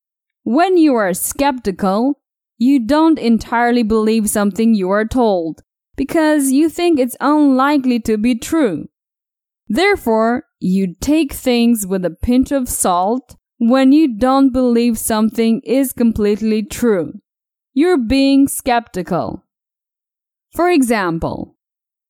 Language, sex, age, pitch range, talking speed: English, female, 10-29, 215-275 Hz, 115 wpm